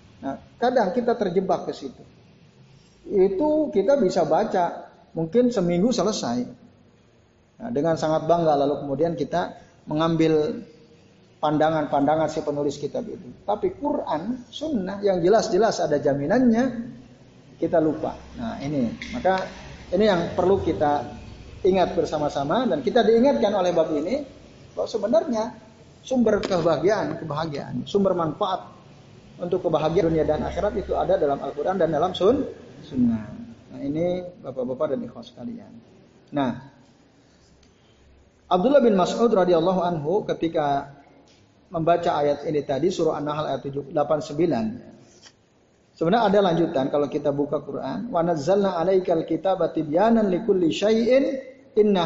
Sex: male